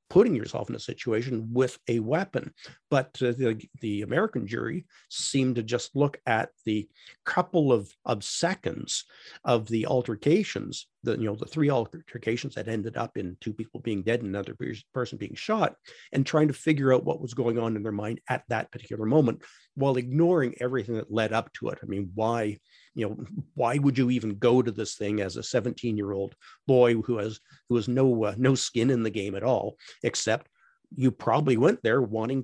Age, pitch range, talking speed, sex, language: 50-69, 110-135 Hz, 195 wpm, male, English